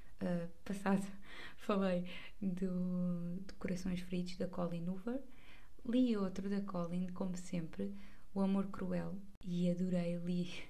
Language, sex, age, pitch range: Portuguese, female, 20-39, 180-195 Hz